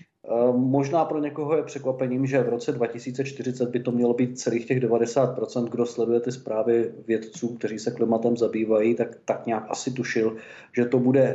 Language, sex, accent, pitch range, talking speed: Czech, male, native, 115-125 Hz, 175 wpm